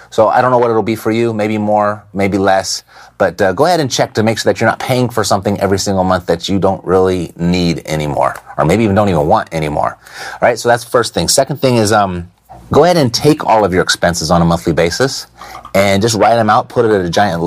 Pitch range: 95-115 Hz